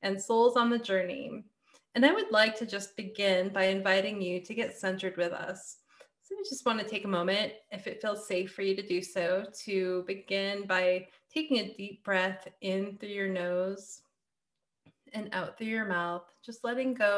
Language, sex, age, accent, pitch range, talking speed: English, female, 20-39, American, 180-210 Hz, 190 wpm